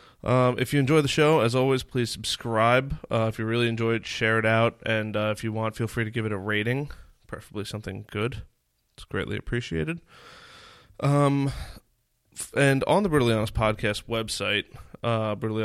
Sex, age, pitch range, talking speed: male, 20-39, 110-125 Hz, 175 wpm